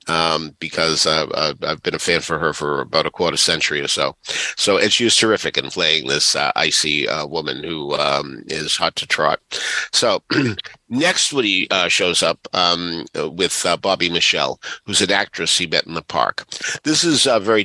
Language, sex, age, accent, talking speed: English, male, 50-69, American, 195 wpm